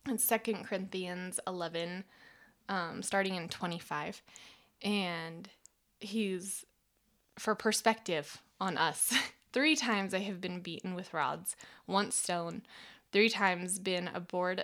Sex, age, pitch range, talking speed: female, 20-39, 185-225 Hz, 115 wpm